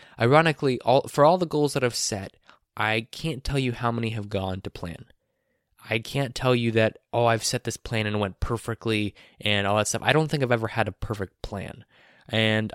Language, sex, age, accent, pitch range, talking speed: English, male, 20-39, American, 100-125 Hz, 220 wpm